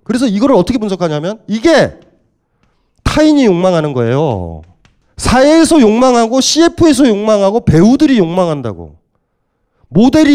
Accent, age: native, 40-59